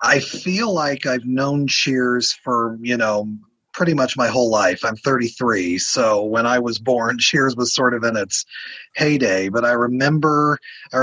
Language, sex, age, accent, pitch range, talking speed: English, male, 30-49, American, 120-145 Hz, 170 wpm